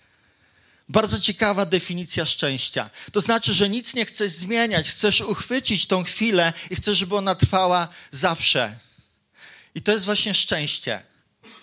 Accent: native